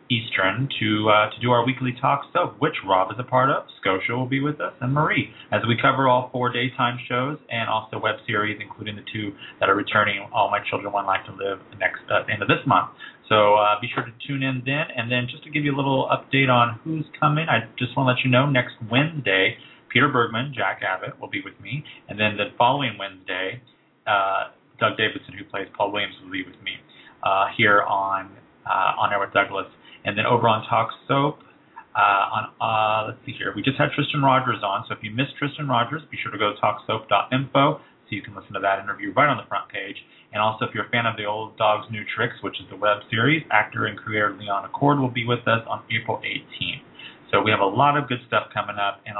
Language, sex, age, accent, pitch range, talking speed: English, male, 30-49, American, 105-130 Hz, 235 wpm